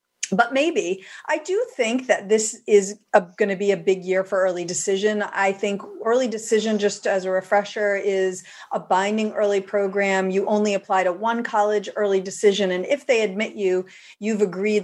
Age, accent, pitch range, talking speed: 40-59, American, 190-230 Hz, 180 wpm